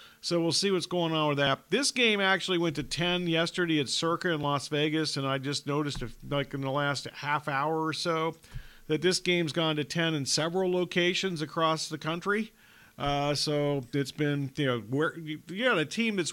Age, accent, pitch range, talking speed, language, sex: 40-59, American, 145-175 Hz, 200 wpm, English, male